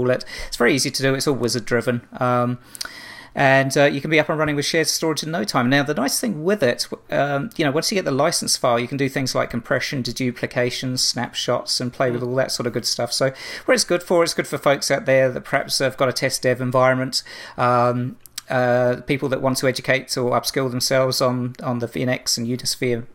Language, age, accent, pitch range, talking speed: English, 40-59, British, 125-145 Hz, 235 wpm